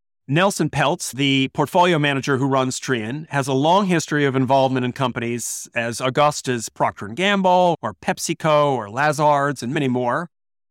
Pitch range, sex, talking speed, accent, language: 125-165 Hz, male, 150 wpm, American, English